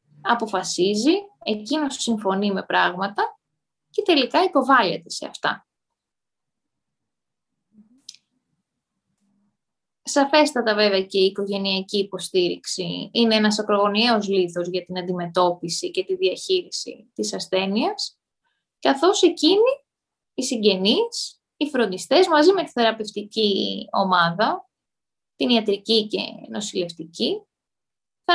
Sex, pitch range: female, 200-330 Hz